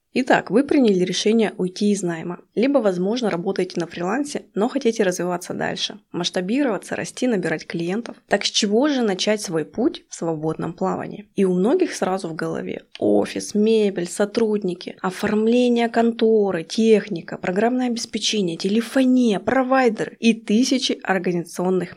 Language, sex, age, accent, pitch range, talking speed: Russian, female, 20-39, native, 185-235 Hz, 135 wpm